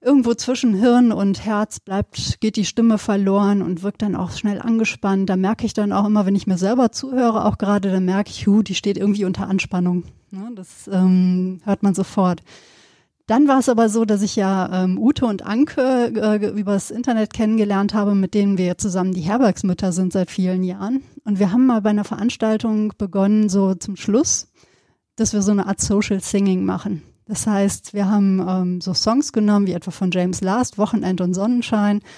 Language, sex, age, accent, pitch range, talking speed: German, female, 30-49, German, 190-225 Hz, 200 wpm